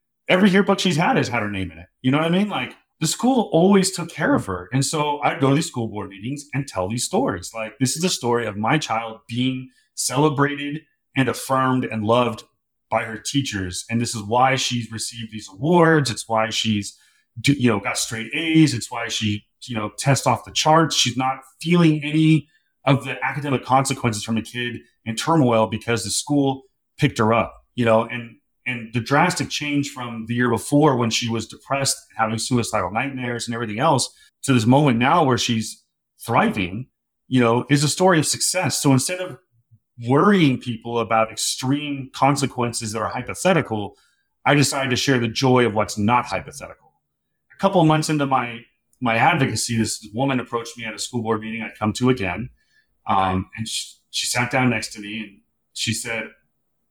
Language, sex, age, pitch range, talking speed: English, male, 30-49, 110-140 Hz, 195 wpm